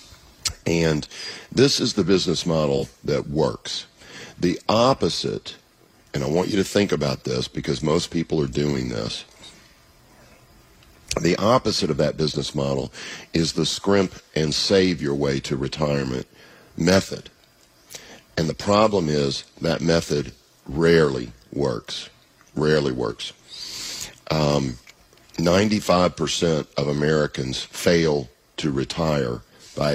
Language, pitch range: English, 70-90 Hz